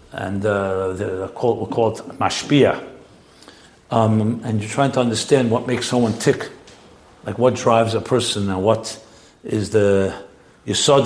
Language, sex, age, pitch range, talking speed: English, male, 60-79, 110-135 Hz, 140 wpm